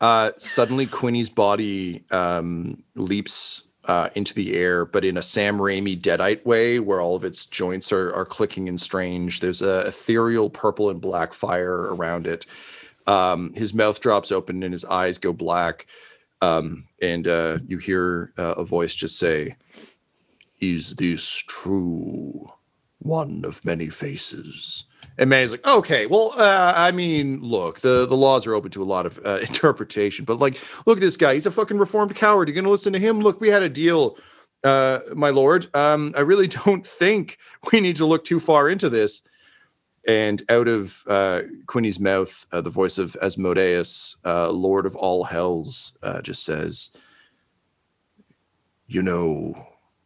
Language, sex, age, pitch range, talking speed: English, male, 40-59, 90-150 Hz, 170 wpm